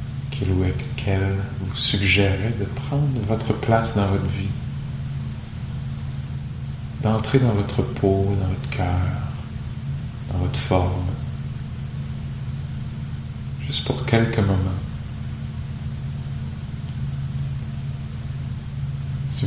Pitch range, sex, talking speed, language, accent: 100-130 Hz, male, 75 wpm, English, French